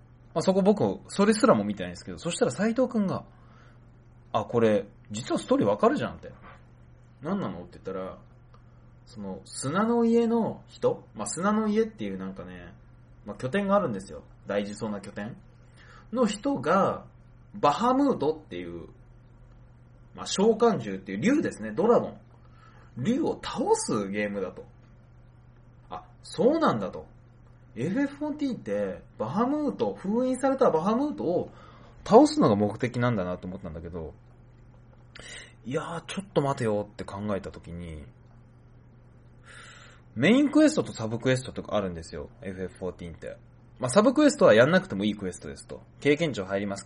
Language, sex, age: Japanese, male, 20-39